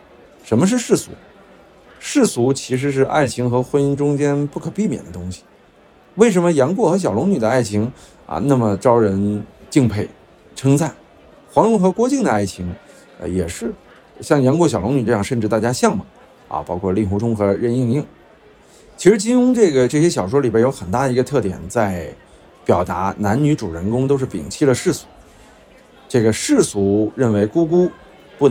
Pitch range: 105-150 Hz